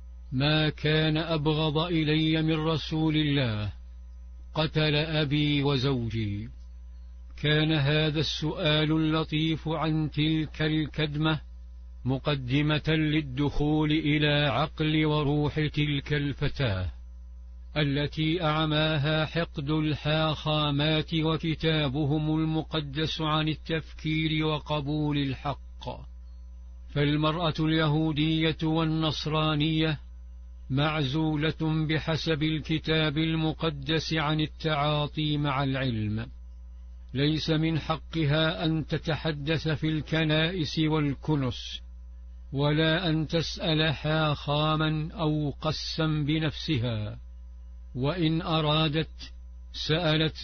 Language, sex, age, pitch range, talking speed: English, male, 50-69, 140-155 Hz, 75 wpm